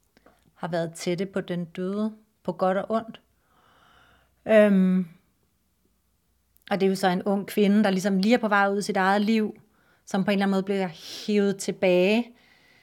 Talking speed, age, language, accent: 180 wpm, 30-49, Danish, native